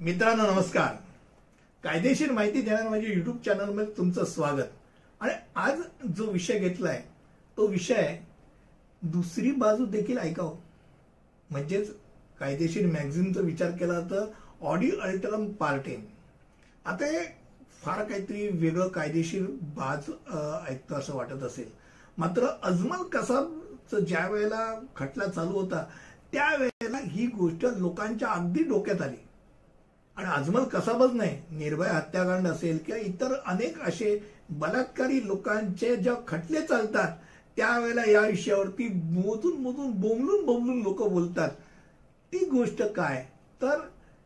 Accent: native